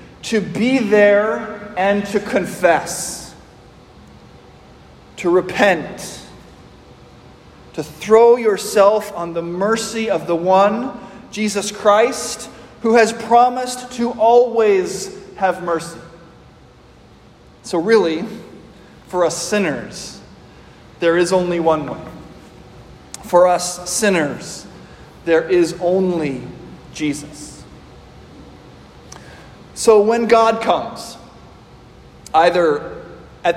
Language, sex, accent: English, male, American